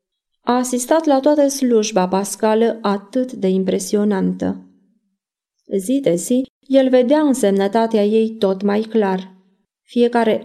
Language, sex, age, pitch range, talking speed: Romanian, female, 20-39, 195-250 Hz, 115 wpm